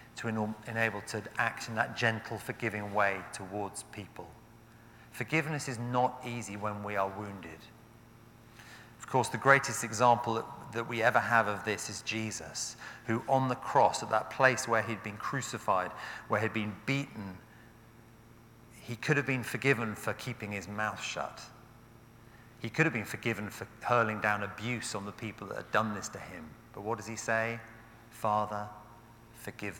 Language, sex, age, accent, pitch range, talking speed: English, male, 40-59, British, 110-125 Hz, 165 wpm